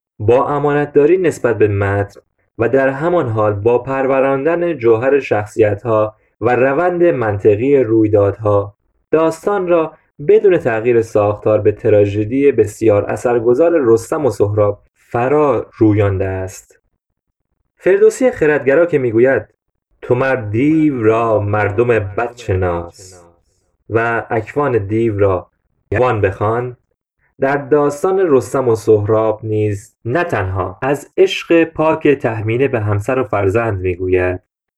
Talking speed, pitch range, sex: 115 wpm, 105-140 Hz, male